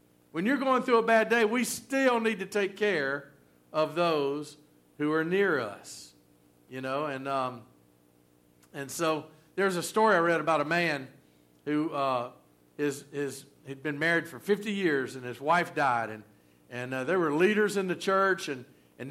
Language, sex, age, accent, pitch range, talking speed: English, male, 50-69, American, 120-170 Hz, 175 wpm